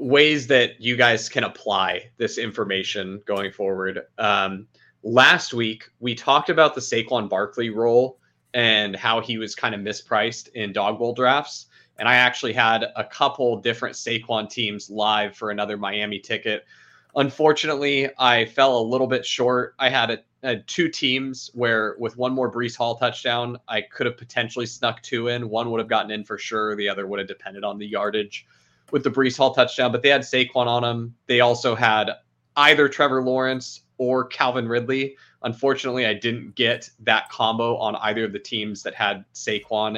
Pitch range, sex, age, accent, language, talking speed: 110-130 Hz, male, 20-39, American, English, 180 wpm